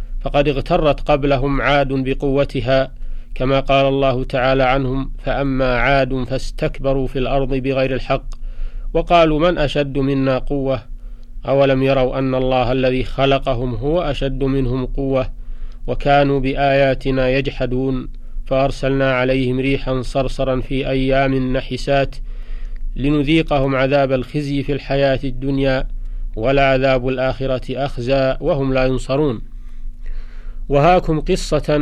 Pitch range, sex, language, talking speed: 130-140 Hz, male, Arabic, 105 wpm